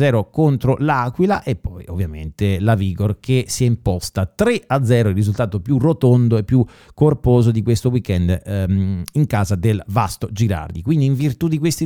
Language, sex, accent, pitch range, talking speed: Italian, male, native, 110-160 Hz, 175 wpm